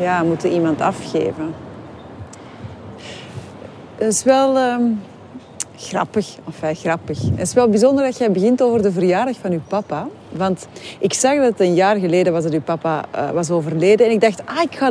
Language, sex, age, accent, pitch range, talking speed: Dutch, female, 40-59, Dutch, 165-225 Hz, 190 wpm